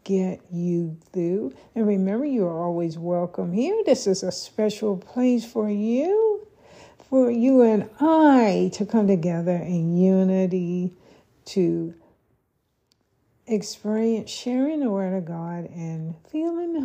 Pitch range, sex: 170-230 Hz, female